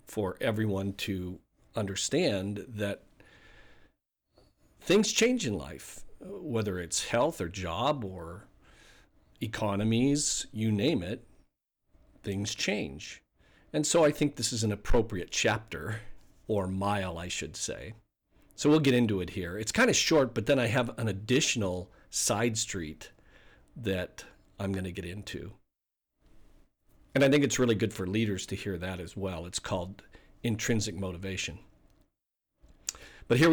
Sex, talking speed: male, 140 wpm